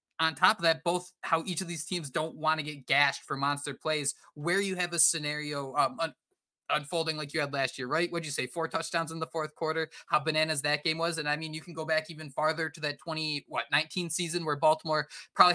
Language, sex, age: English, male, 20-39